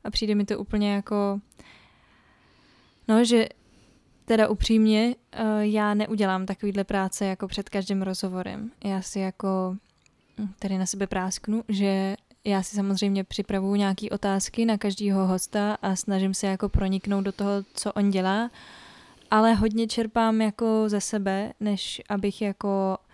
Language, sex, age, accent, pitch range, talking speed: Czech, female, 10-29, native, 195-215 Hz, 140 wpm